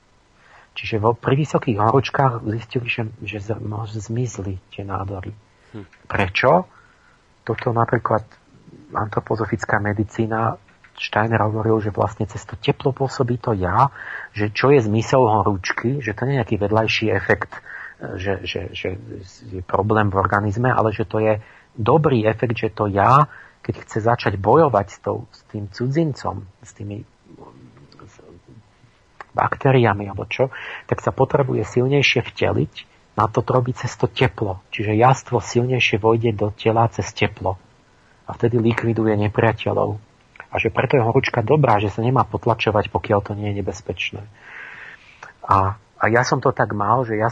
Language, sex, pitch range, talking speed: Slovak, male, 105-120 Hz, 145 wpm